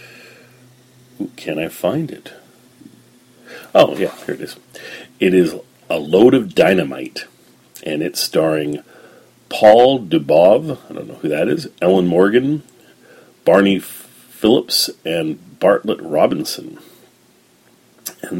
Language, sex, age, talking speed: English, male, 40-59, 110 wpm